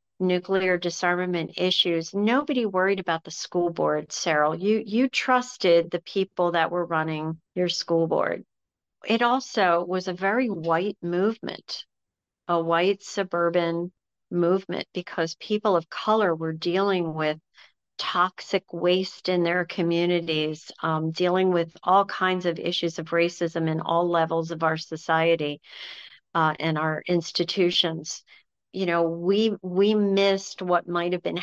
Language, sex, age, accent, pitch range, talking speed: English, female, 50-69, American, 170-195 Hz, 135 wpm